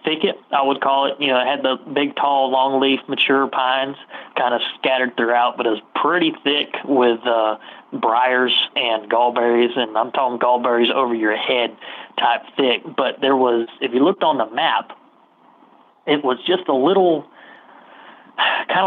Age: 30-49